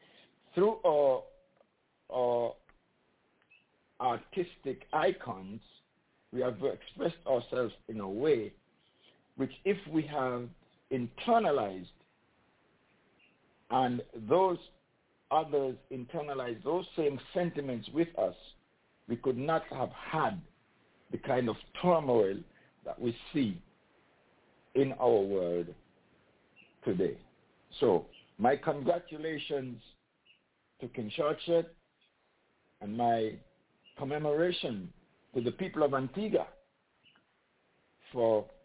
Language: English